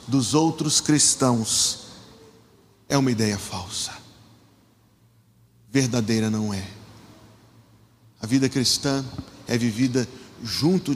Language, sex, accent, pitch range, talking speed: Portuguese, male, Brazilian, 115-165 Hz, 90 wpm